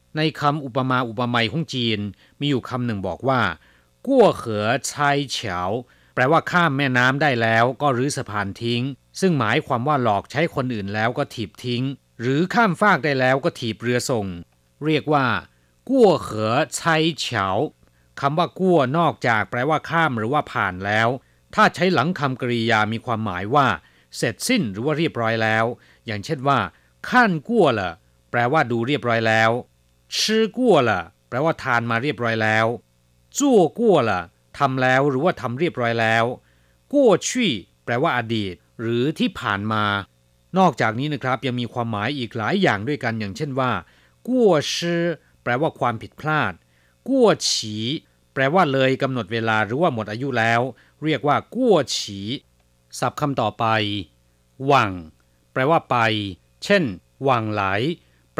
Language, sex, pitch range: Chinese, male, 105-145 Hz